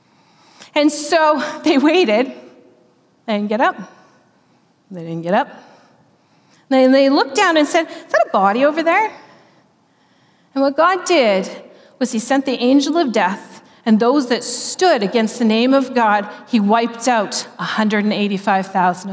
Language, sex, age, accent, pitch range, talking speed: English, female, 40-59, American, 215-280 Hz, 155 wpm